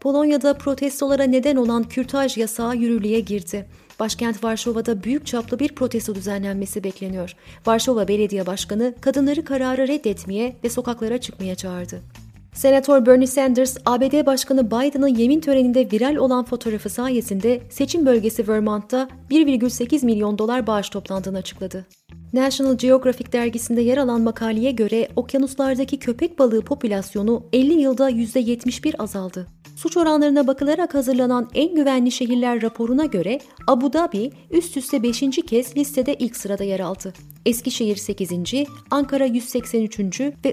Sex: female